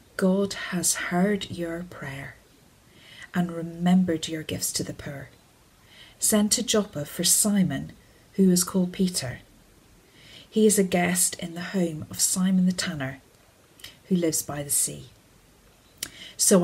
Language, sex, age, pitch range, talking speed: English, female, 40-59, 150-185 Hz, 135 wpm